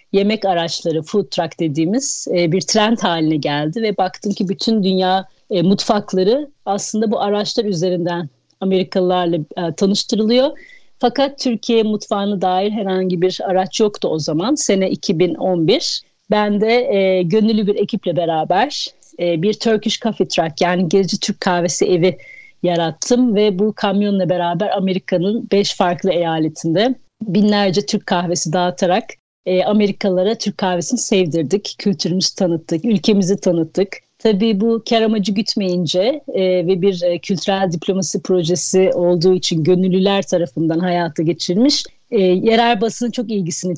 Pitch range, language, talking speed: 180-215 Hz, Turkish, 130 wpm